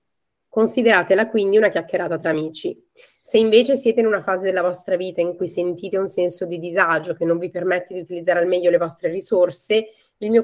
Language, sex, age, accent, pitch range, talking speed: Italian, female, 20-39, native, 175-215 Hz, 200 wpm